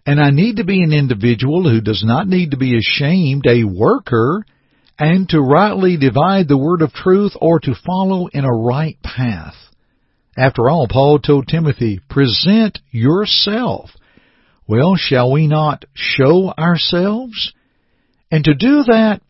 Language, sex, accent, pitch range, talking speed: English, male, American, 120-165 Hz, 150 wpm